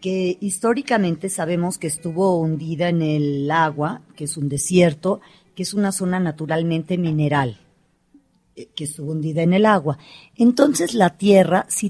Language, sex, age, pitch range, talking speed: Spanish, female, 40-59, 155-195 Hz, 145 wpm